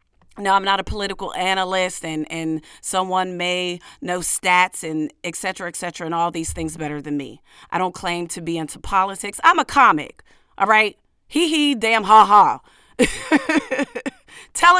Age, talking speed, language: 40-59, 170 wpm, English